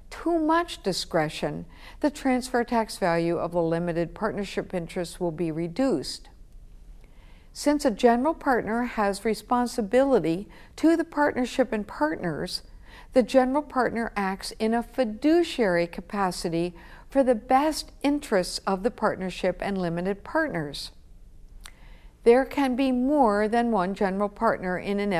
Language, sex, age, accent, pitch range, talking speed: English, female, 60-79, American, 190-260 Hz, 130 wpm